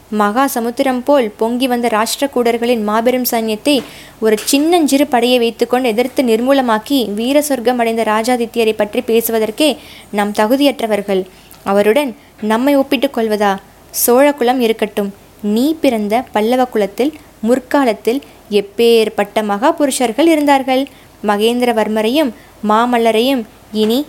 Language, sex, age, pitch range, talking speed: Tamil, female, 20-39, 220-265 Hz, 105 wpm